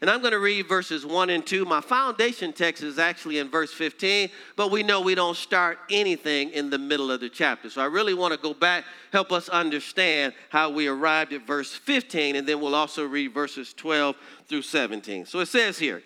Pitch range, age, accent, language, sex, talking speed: 170-240 Hz, 50-69, American, English, male, 215 wpm